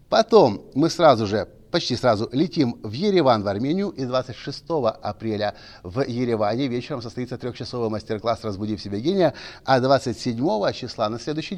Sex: male